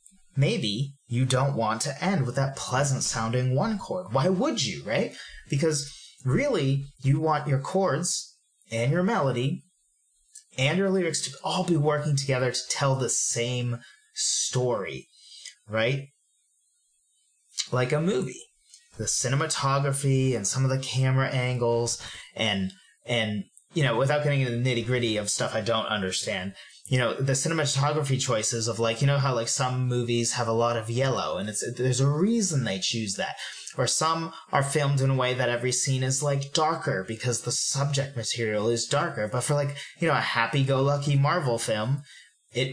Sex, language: male, English